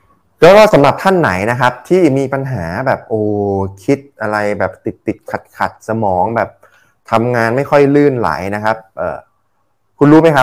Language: Thai